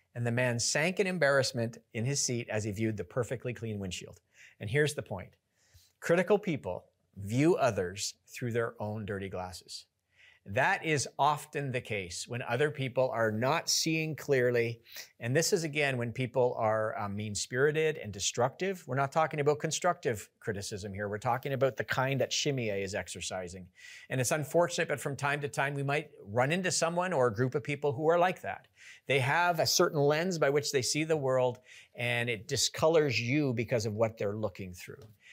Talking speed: 190 wpm